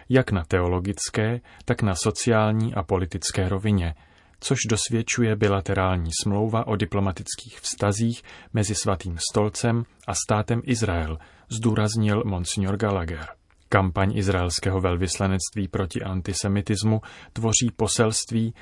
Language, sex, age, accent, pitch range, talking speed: Czech, male, 30-49, native, 95-110 Hz, 105 wpm